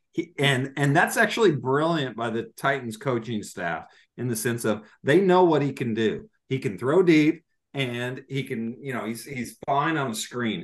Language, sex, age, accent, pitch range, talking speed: English, male, 40-59, American, 115-140 Hz, 205 wpm